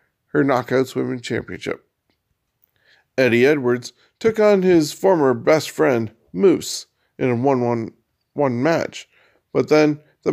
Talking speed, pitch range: 115 wpm, 115-150 Hz